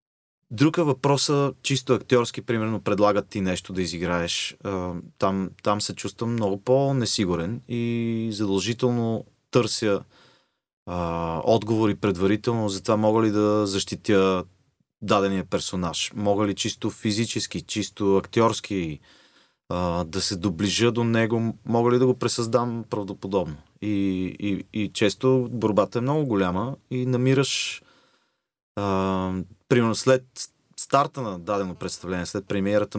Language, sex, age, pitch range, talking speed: Bulgarian, male, 30-49, 95-115 Hz, 120 wpm